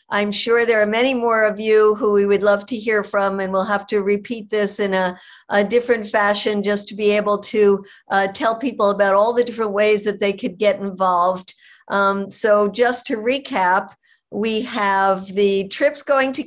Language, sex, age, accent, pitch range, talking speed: English, female, 60-79, American, 195-230 Hz, 200 wpm